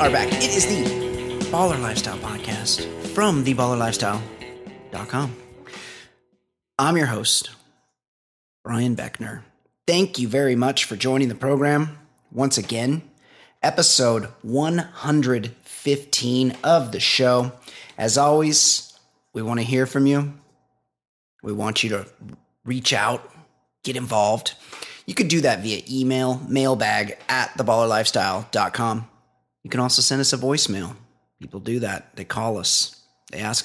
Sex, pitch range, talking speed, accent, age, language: male, 110-135 Hz, 125 wpm, American, 30-49, English